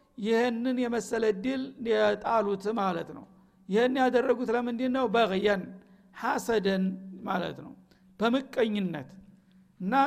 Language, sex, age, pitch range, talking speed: Amharic, male, 60-79, 210-245 Hz, 95 wpm